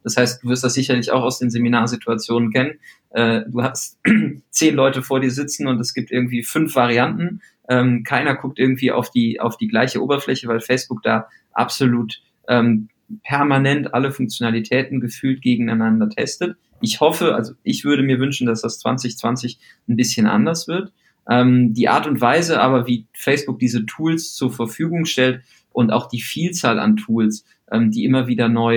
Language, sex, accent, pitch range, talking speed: German, male, German, 120-150 Hz, 165 wpm